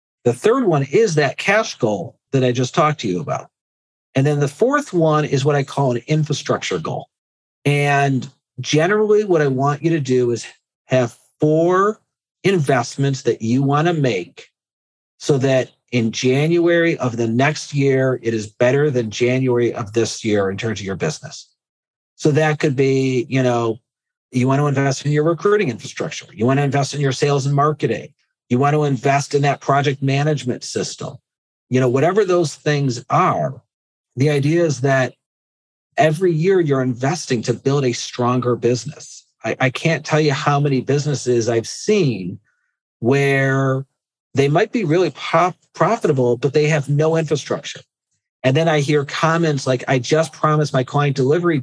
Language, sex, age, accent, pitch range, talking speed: English, male, 50-69, American, 125-155 Hz, 170 wpm